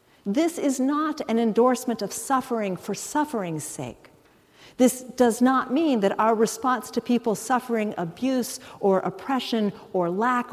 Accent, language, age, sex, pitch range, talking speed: American, English, 50-69, female, 190-245 Hz, 140 wpm